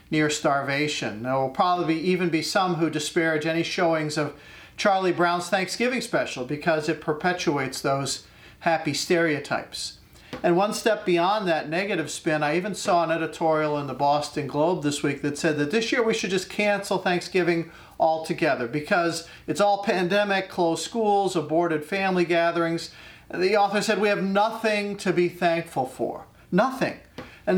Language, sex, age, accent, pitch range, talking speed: English, male, 50-69, American, 150-185 Hz, 160 wpm